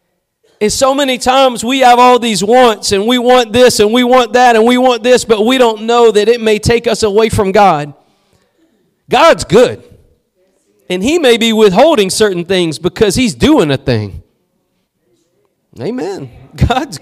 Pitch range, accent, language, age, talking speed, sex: 185-245 Hz, American, English, 40-59, 175 wpm, male